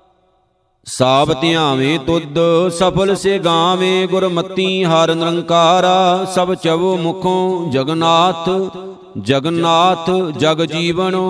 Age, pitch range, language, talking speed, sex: 50-69, 165-185 Hz, Punjabi, 75 wpm, male